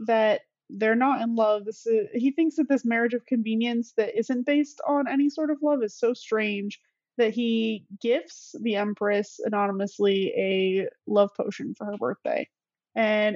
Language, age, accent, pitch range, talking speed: English, 20-39, American, 215-275 Hz, 170 wpm